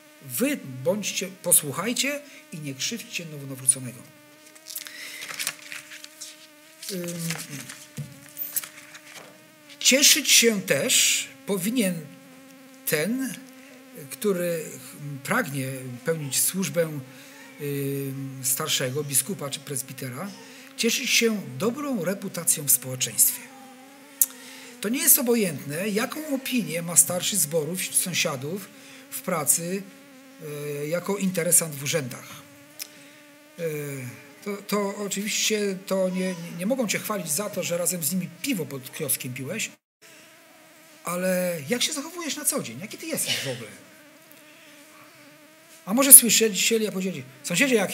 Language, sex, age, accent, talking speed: Polish, male, 50-69, native, 105 wpm